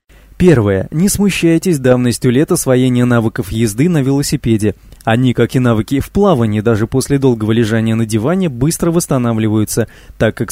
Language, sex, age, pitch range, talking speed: Russian, male, 20-39, 115-155 Hz, 150 wpm